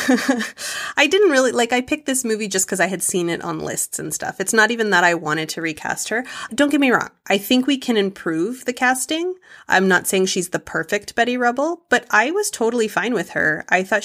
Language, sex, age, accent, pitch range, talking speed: English, female, 30-49, American, 180-235 Hz, 235 wpm